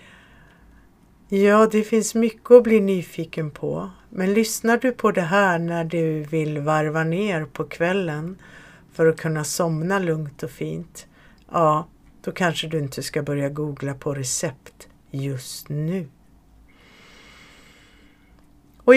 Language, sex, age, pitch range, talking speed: Swedish, female, 50-69, 150-190 Hz, 130 wpm